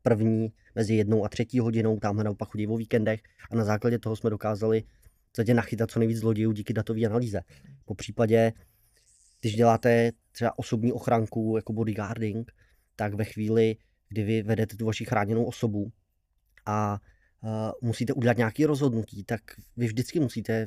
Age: 20-39